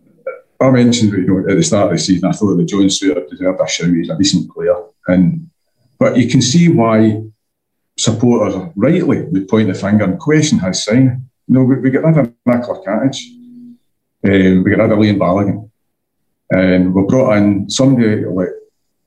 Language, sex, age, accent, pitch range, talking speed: English, male, 40-59, British, 105-135 Hz, 185 wpm